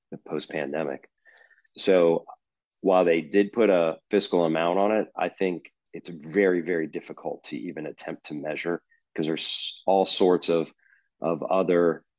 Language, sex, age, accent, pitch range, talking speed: English, male, 40-59, American, 80-90 Hz, 150 wpm